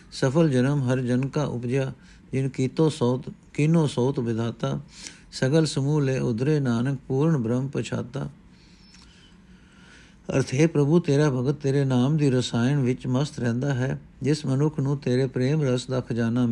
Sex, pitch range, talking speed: male, 120-145 Hz, 150 wpm